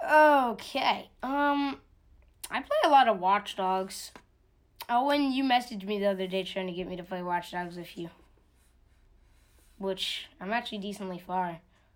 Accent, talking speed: American, 155 wpm